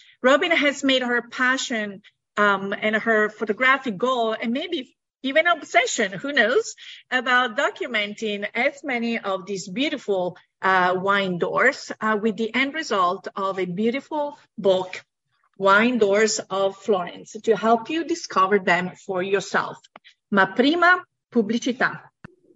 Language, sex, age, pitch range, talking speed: English, female, 40-59, 205-275 Hz, 130 wpm